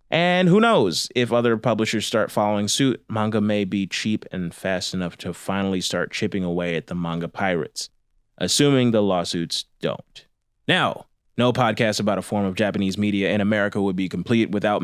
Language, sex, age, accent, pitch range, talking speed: English, male, 20-39, American, 100-120 Hz, 180 wpm